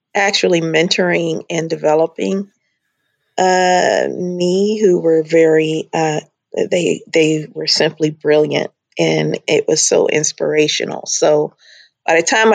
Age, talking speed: 40-59, 115 wpm